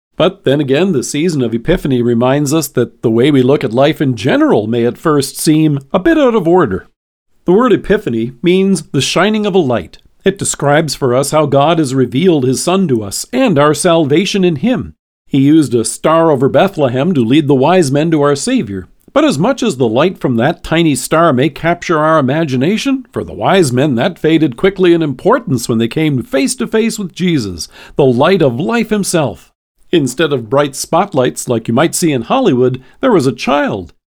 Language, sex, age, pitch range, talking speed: English, male, 50-69, 130-180 Hz, 205 wpm